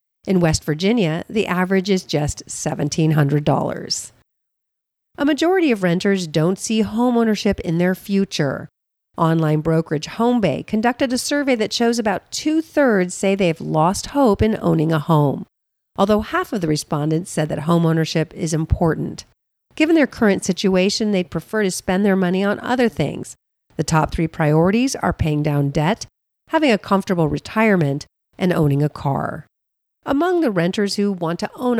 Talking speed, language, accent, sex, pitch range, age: 155 wpm, English, American, female, 165-245 Hz, 40-59